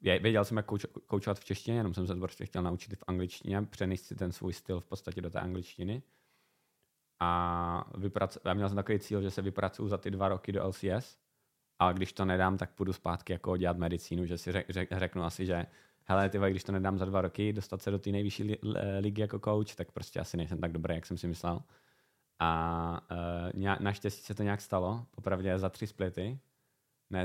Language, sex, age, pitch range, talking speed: Czech, male, 20-39, 90-100 Hz, 215 wpm